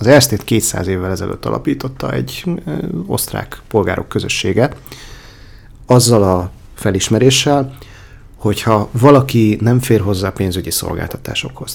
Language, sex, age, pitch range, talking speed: Hungarian, male, 30-49, 95-120 Hz, 100 wpm